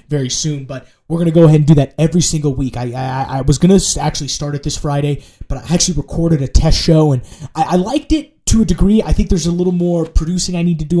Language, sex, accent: English, male, American